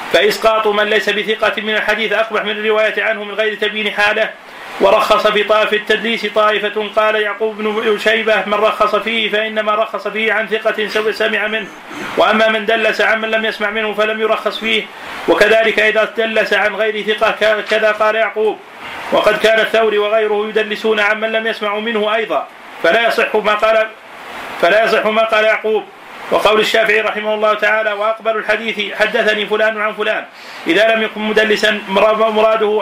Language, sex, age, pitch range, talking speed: Arabic, male, 40-59, 210-220 Hz, 165 wpm